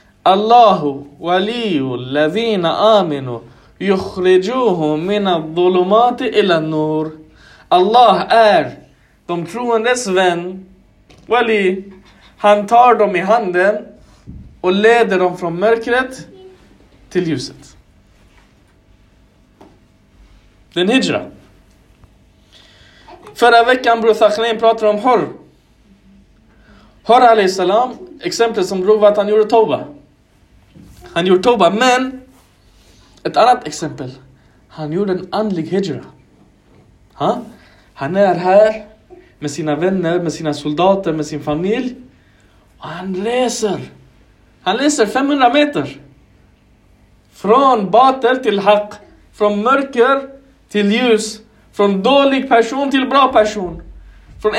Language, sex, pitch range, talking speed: Swedish, male, 150-230 Hz, 100 wpm